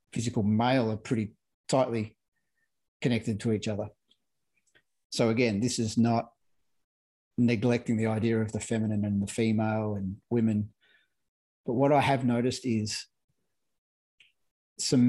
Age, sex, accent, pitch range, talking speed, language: 30-49, male, Australian, 110-125 Hz, 125 wpm, English